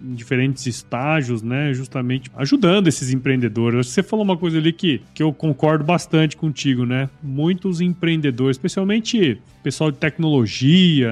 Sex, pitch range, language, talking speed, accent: male, 130-190 Hz, Portuguese, 140 wpm, Brazilian